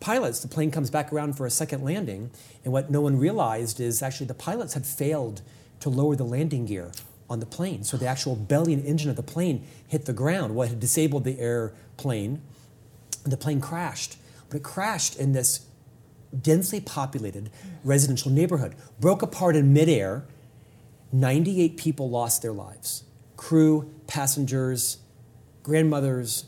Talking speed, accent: 160 wpm, American